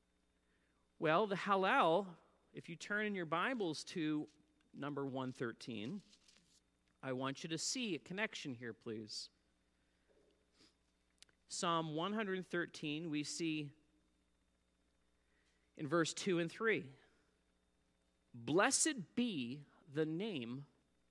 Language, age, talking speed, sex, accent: English, 40-59, 95 wpm, male, American